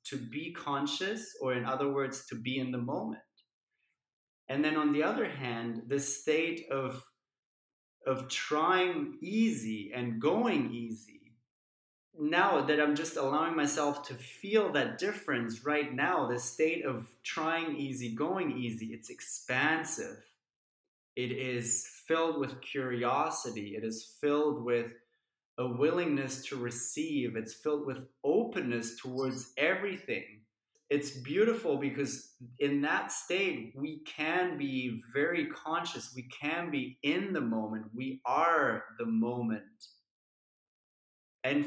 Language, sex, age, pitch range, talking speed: English, male, 20-39, 120-150 Hz, 130 wpm